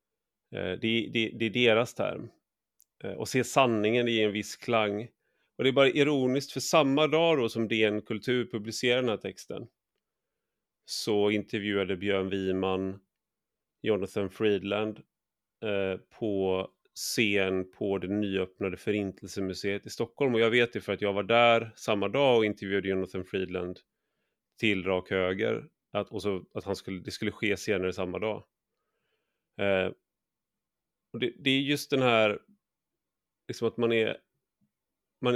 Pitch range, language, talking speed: 100-115 Hz, Swedish, 150 wpm